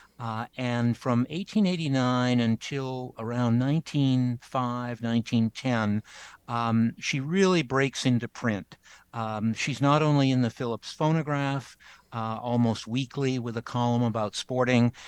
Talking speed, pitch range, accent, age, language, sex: 120 wpm, 110-130 Hz, American, 60-79, English, male